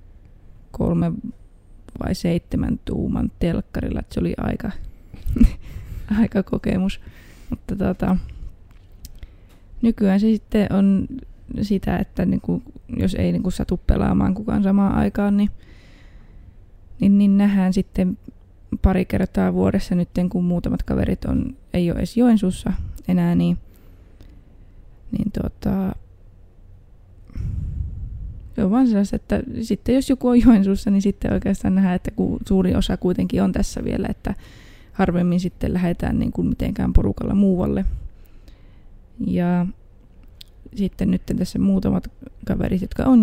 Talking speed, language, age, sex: 115 wpm, Finnish, 20-39, female